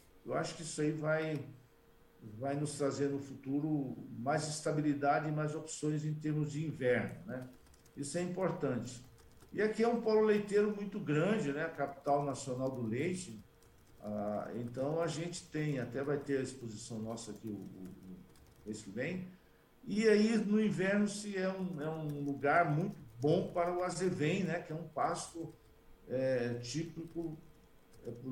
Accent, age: Brazilian, 50-69